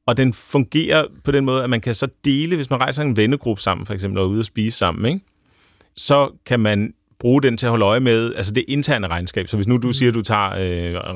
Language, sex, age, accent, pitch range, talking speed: Danish, male, 30-49, native, 95-115 Hz, 265 wpm